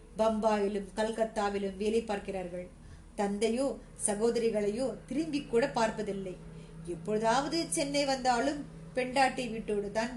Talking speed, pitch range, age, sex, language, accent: 90 wpm, 210-270 Hz, 20-39, female, Tamil, native